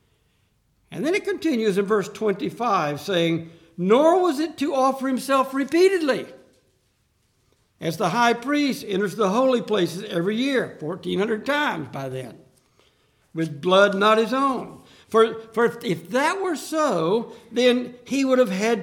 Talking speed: 145 wpm